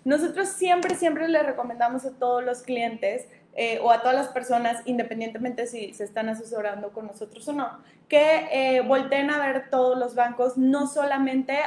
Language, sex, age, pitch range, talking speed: Spanish, female, 20-39, 230-280 Hz, 175 wpm